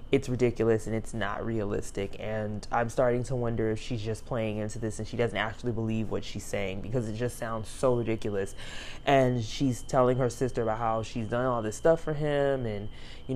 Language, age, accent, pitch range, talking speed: English, 20-39, American, 110-130 Hz, 210 wpm